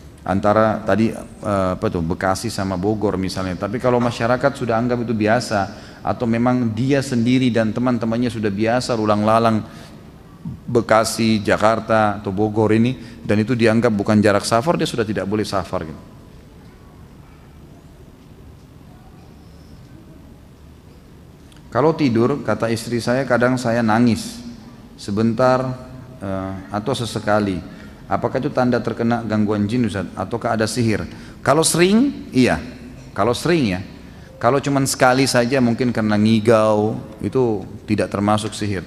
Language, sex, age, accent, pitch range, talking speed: Indonesian, male, 30-49, native, 105-125 Hz, 125 wpm